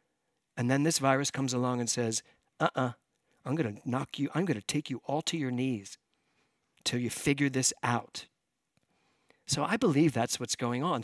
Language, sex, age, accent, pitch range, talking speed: English, male, 50-69, American, 130-190 Hz, 180 wpm